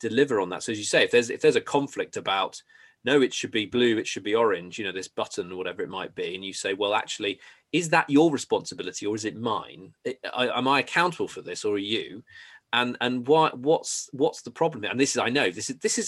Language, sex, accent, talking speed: English, male, British, 260 wpm